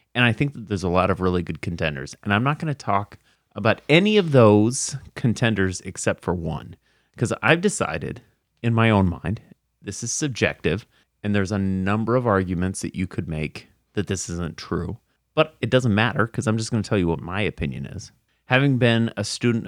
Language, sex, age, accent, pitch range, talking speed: English, male, 30-49, American, 90-115 Hz, 205 wpm